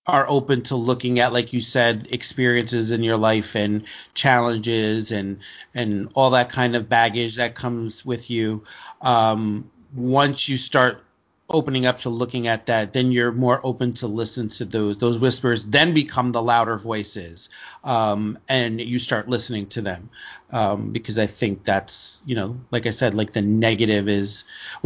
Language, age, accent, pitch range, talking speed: English, 40-59, American, 110-130 Hz, 175 wpm